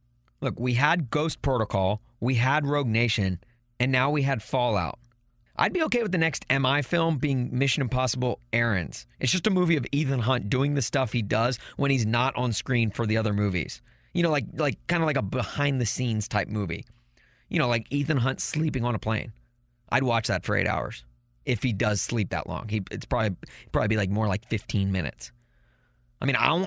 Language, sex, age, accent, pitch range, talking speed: English, male, 30-49, American, 110-140 Hz, 205 wpm